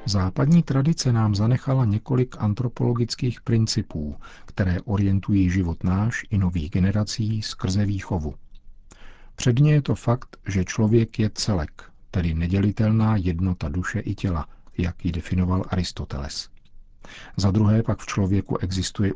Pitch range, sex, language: 90-115 Hz, male, Czech